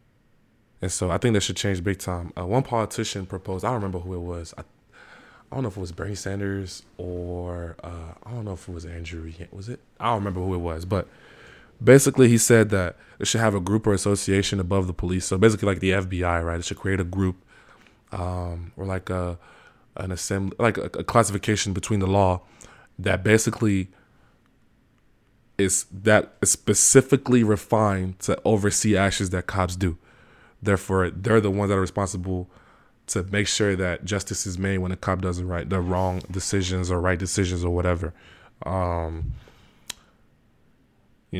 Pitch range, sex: 90-105 Hz, male